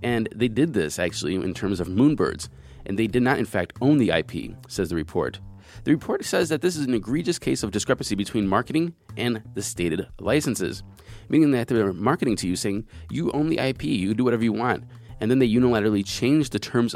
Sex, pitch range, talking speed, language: male, 100-130 Hz, 215 wpm, English